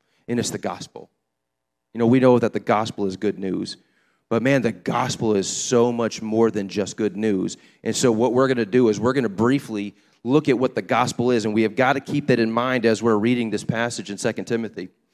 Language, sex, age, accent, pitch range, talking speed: English, male, 30-49, American, 110-155 Hz, 240 wpm